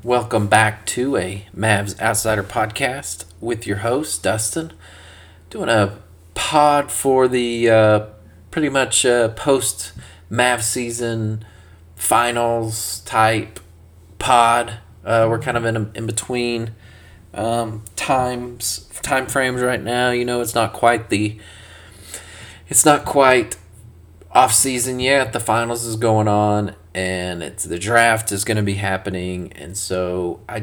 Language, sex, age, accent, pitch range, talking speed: English, male, 30-49, American, 95-115 Hz, 135 wpm